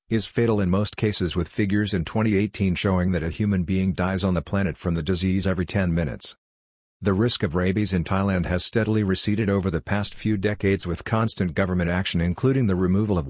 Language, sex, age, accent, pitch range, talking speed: English, male, 50-69, American, 90-105 Hz, 210 wpm